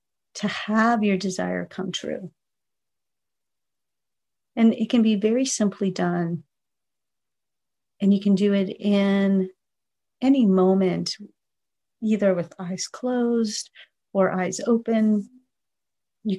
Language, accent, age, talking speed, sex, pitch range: English, American, 40-59, 105 wpm, female, 190-215 Hz